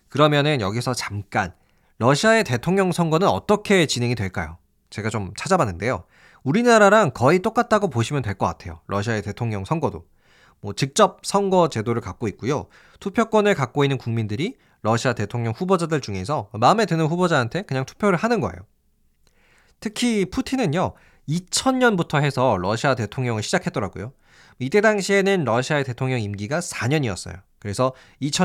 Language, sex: Korean, male